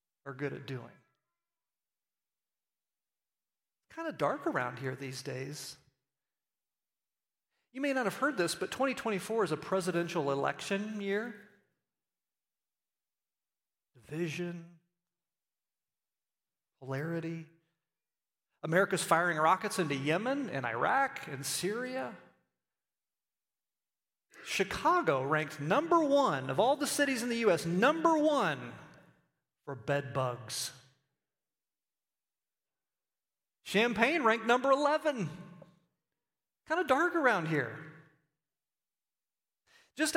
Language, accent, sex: English, American, male